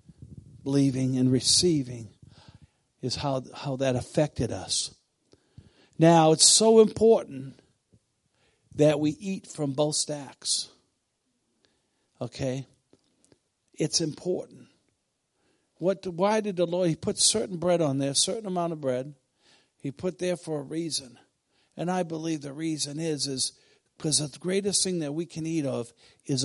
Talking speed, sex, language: 135 wpm, male, English